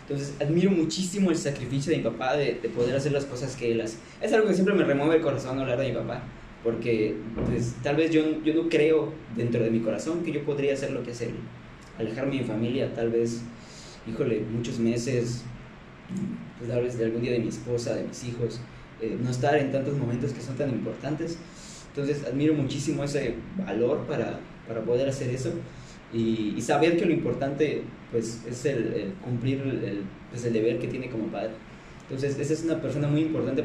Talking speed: 210 wpm